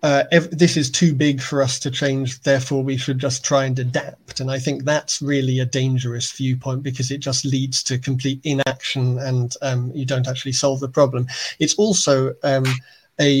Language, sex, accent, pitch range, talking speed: English, male, British, 130-145 Hz, 195 wpm